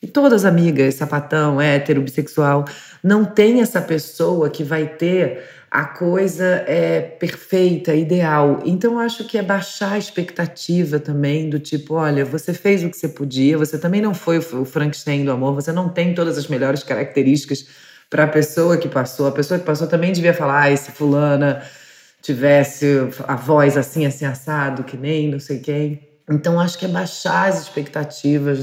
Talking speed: 180 wpm